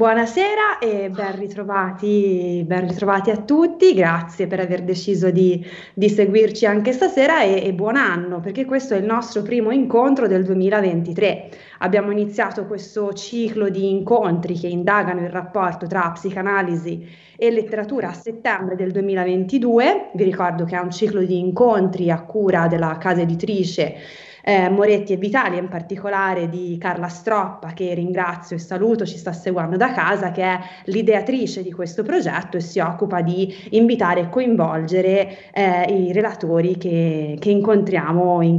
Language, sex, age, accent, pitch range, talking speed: Italian, female, 20-39, native, 175-210 Hz, 155 wpm